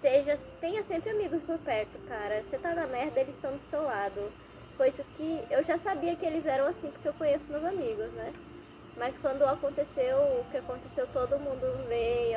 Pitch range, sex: 240-305 Hz, female